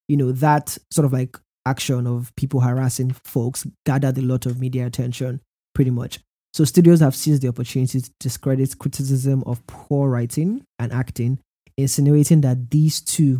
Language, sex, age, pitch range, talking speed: English, male, 20-39, 125-140 Hz, 165 wpm